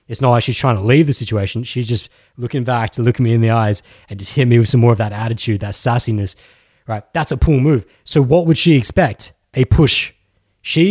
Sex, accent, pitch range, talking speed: male, Australian, 110-165 Hz, 240 wpm